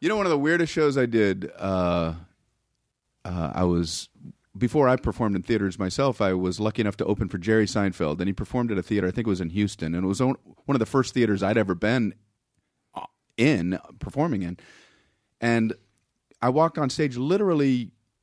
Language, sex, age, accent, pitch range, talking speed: English, male, 40-59, American, 105-160 Hz, 200 wpm